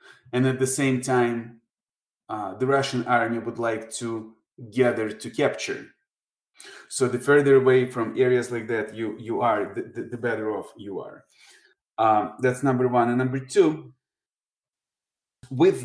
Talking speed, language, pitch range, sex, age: 150 wpm, English, 115-135 Hz, male, 30-49